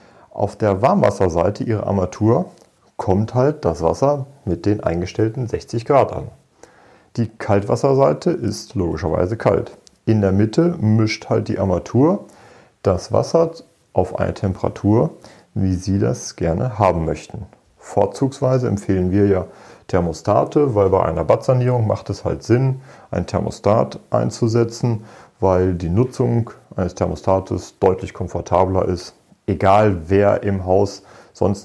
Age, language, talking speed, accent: 40-59, German, 125 wpm, German